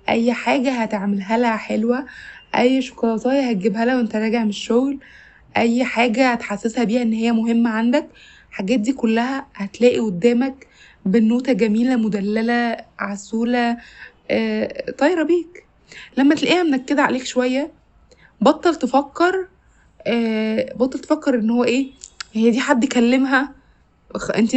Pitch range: 225-275 Hz